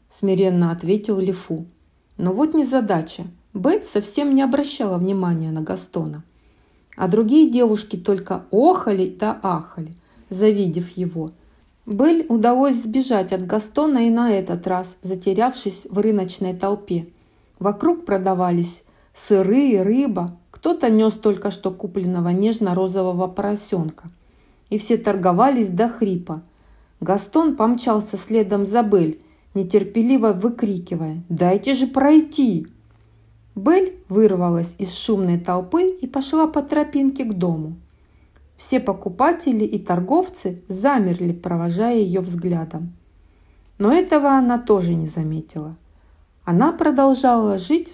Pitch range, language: 175-235 Hz, Russian